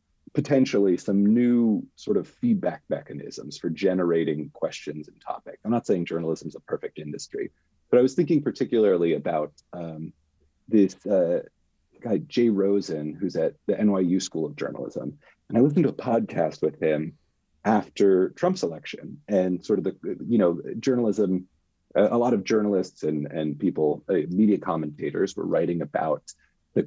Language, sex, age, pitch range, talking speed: English, male, 30-49, 80-115 Hz, 160 wpm